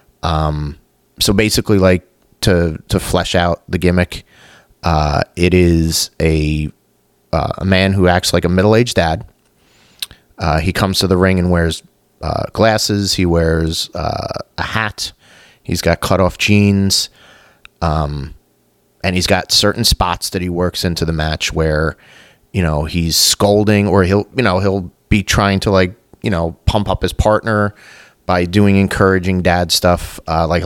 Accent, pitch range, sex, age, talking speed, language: American, 85-100 Hz, male, 30-49, 160 wpm, English